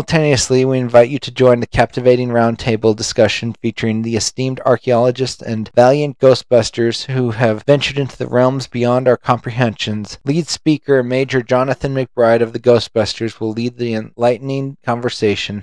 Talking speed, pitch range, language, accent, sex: 150 wpm, 115-135 Hz, English, American, male